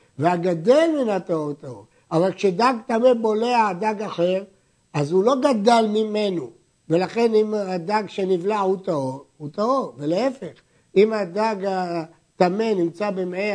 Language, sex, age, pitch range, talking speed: Hebrew, male, 60-79, 170-230 Hz, 130 wpm